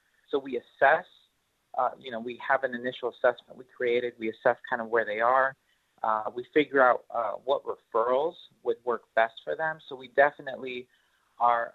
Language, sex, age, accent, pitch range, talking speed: English, male, 30-49, American, 120-150 Hz, 185 wpm